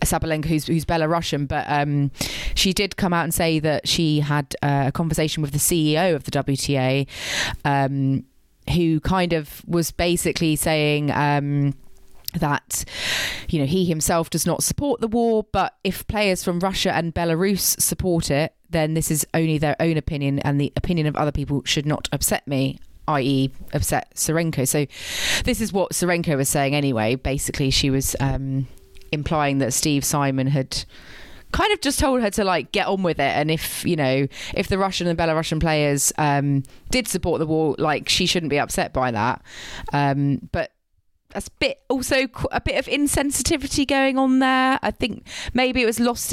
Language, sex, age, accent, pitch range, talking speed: English, female, 30-49, British, 145-180 Hz, 180 wpm